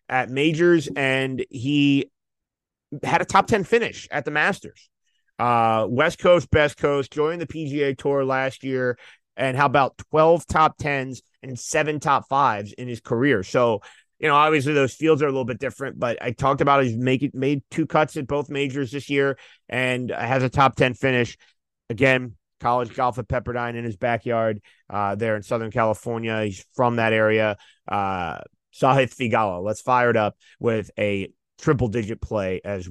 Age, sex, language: 30-49, male, English